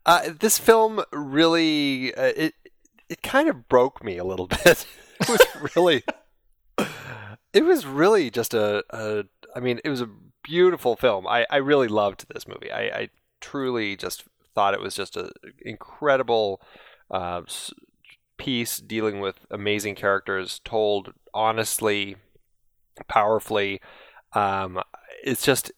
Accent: American